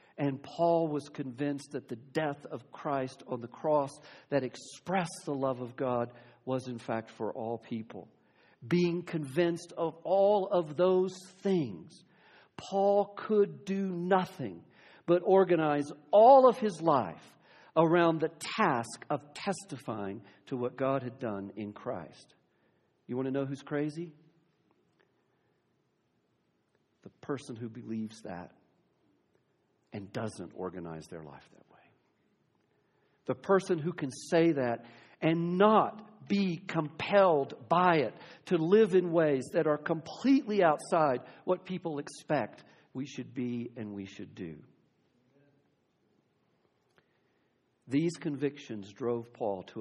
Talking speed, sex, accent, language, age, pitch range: 130 wpm, male, American, English, 50-69, 120-170 Hz